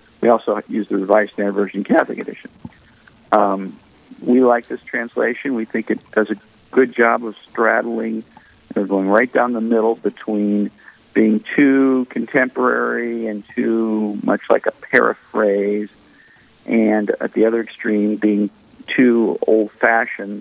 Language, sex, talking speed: English, male, 135 wpm